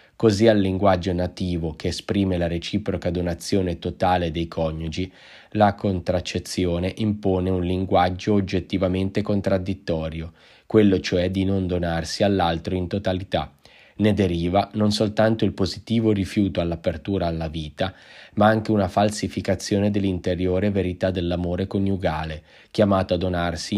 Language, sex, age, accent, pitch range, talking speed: Italian, male, 20-39, native, 90-100 Hz, 120 wpm